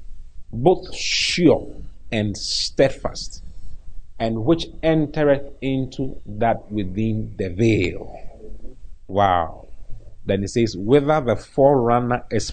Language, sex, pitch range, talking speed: English, male, 95-125 Hz, 95 wpm